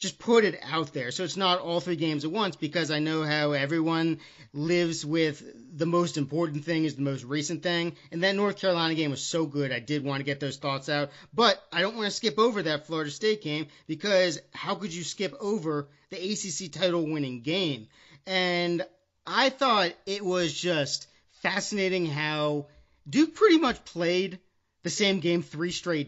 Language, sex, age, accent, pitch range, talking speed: English, male, 40-59, American, 150-190 Hz, 195 wpm